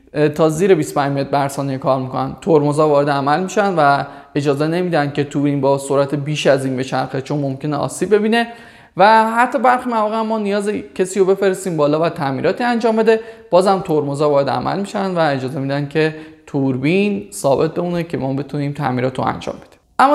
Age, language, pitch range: 20-39, Persian, 140-185 Hz